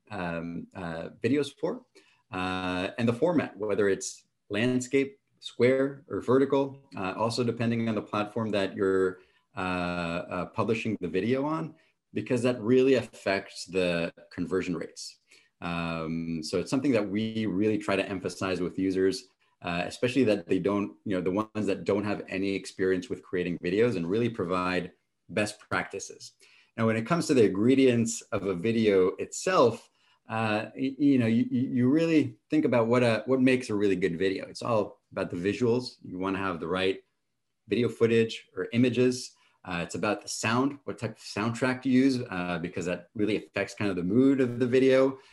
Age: 30-49